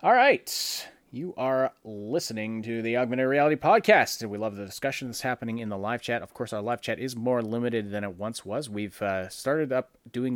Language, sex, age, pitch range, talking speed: English, male, 30-49, 95-125 Hz, 215 wpm